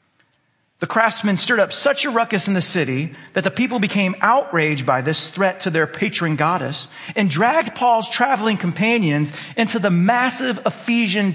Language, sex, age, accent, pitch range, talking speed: English, male, 40-59, American, 165-245 Hz, 165 wpm